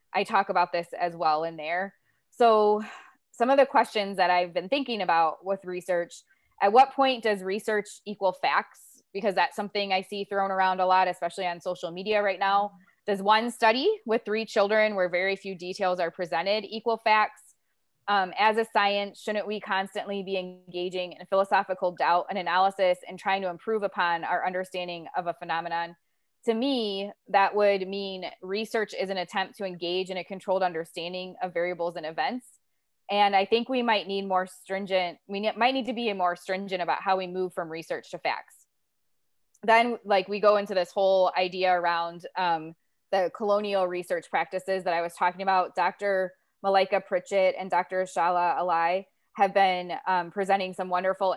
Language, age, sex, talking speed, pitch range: English, 20-39, female, 180 wpm, 180-205 Hz